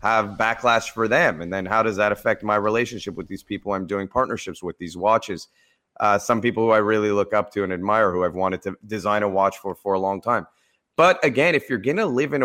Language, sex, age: English, male, 30-49